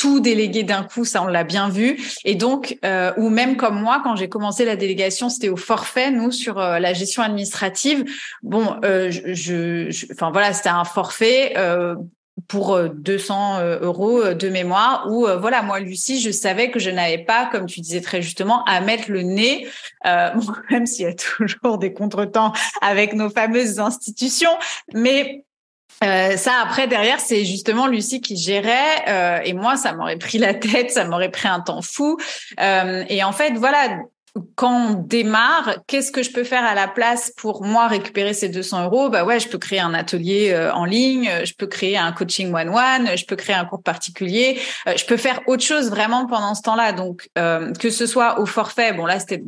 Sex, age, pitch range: female, 30-49, 190-245 Hz